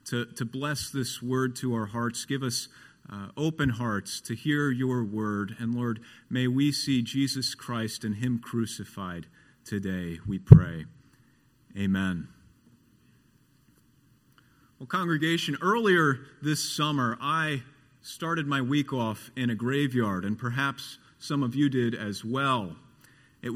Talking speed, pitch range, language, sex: 135 wpm, 115-140 Hz, English, male